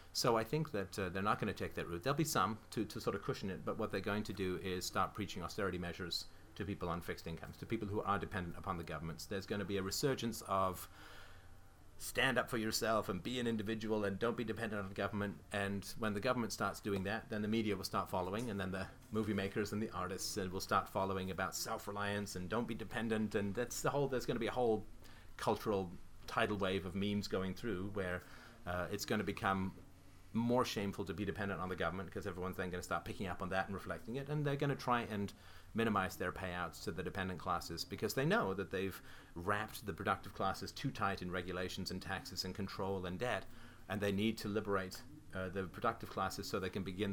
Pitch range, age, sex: 95-110 Hz, 30-49, male